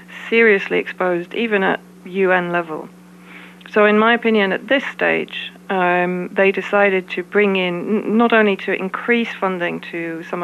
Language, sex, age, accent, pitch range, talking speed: English, female, 40-59, British, 165-195 Hz, 150 wpm